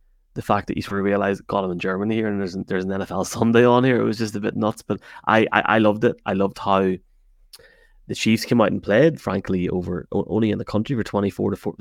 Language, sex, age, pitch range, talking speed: English, male, 20-39, 95-110 Hz, 260 wpm